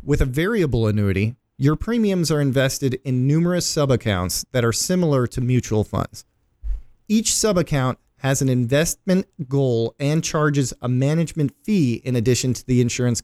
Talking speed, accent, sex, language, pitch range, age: 150 wpm, American, male, English, 120-155 Hz, 40-59